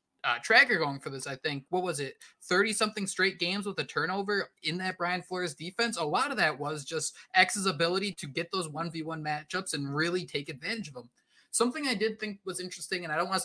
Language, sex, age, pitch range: English, male, 20-39, 150-190 Hz